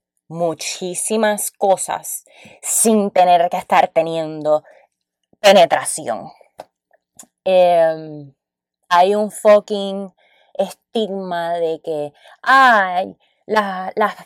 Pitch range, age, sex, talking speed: 160-230 Hz, 20-39, female, 65 wpm